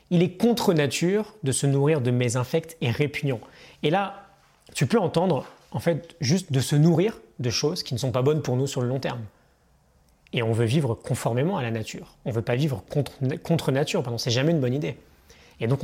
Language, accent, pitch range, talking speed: French, French, 130-165 Hz, 225 wpm